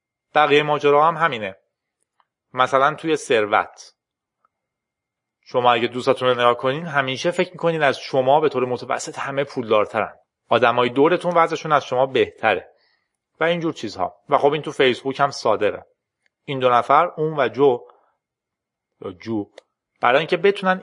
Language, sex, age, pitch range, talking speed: Persian, male, 30-49, 120-170 Hz, 145 wpm